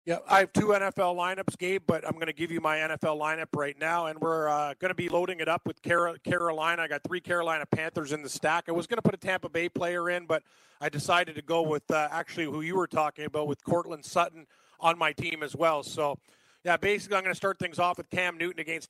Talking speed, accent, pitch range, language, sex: 255 wpm, American, 165-195 Hz, English, male